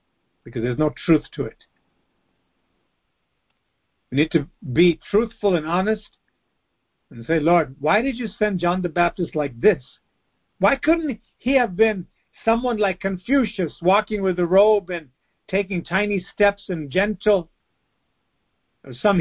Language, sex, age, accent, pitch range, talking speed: English, male, 50-69, American, 120-185 Hz, 135 wpm